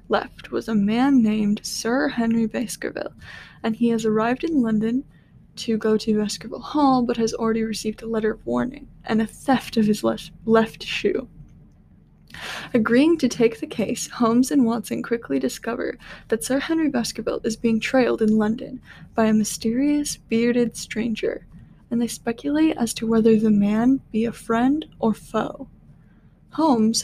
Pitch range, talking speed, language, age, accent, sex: 220-250 Hz, 160 wpm, English, 10-29, American, female